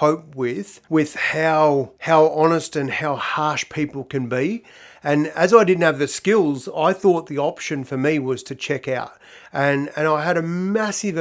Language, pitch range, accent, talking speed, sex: English, 140-170 Hz, Australian, 185 wpm, male